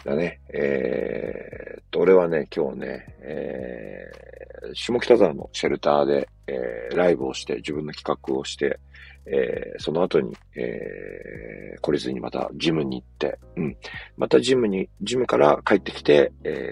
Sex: male